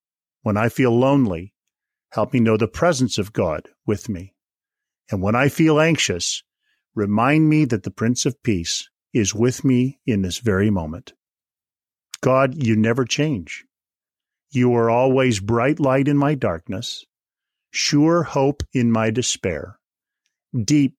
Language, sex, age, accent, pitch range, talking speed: English, male, 50-69, American, 105-135 Hz, 145 wpm